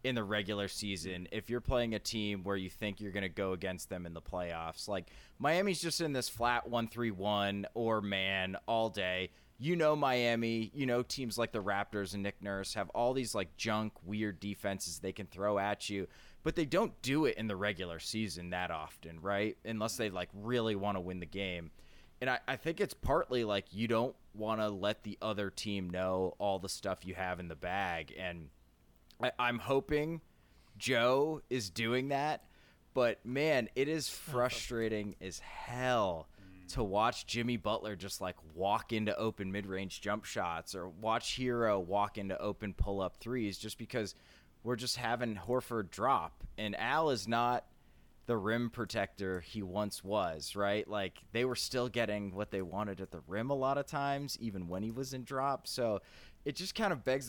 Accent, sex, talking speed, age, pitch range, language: American, male, 190 wpm, 20-39, 95-120 Hz, English